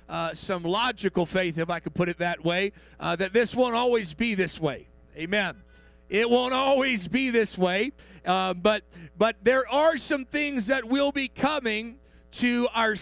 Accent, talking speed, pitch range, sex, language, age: American, 180 wpm, 185-255 Hz, male, English, 50-69